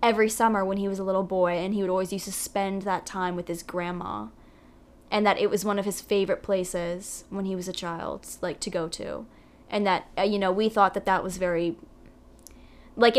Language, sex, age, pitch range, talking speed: English, female, 10-29, 175-200 Hz, 225 wpm